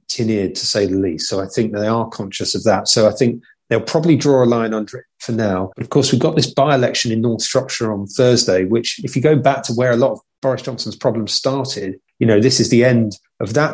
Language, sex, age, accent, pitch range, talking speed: English, male, 30-49, British, 110-135 Hz, 260 wpm